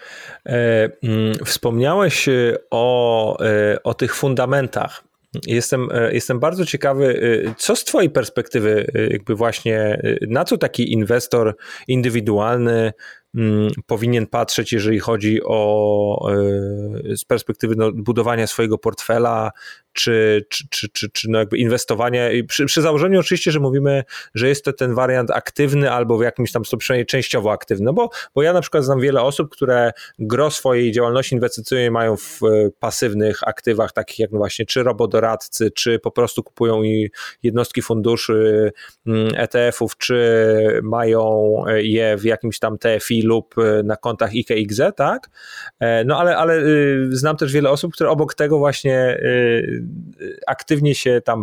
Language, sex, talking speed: Polish, male, 140 wpm